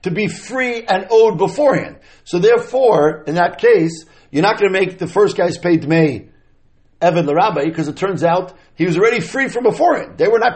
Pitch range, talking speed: 140-200 Hz, 205 wpm